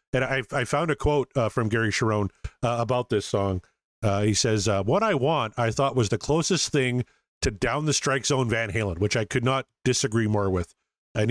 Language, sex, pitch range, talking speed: English, male, 110-135 Hz, 225 wpm